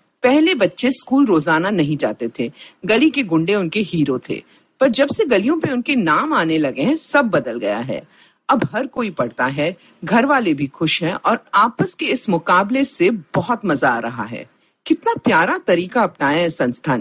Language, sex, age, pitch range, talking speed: Hindi, female, 50-69, 165-275 Hz, 95 wpm